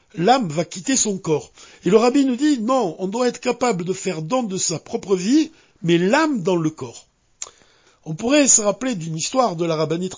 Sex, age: male, 60-79